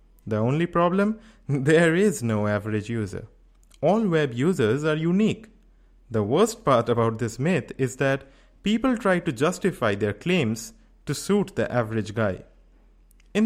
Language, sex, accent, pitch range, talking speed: English, male, Indian, 115-195 Hz, 145 wpm